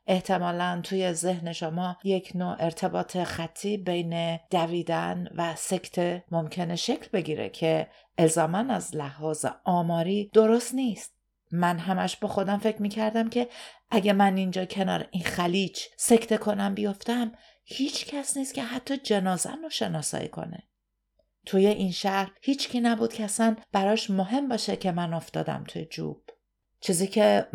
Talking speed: 140 wpm